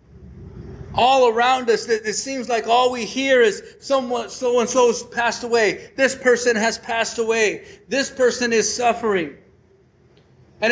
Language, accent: English, American